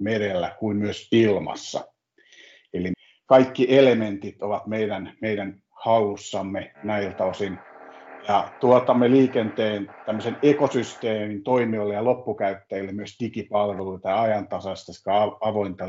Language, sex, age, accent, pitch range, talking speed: Finnish, male, 50-69, native, 100-120 Hz, 95 wpm